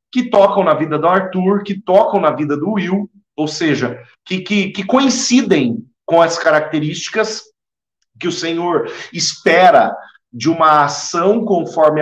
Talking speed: 145 wpm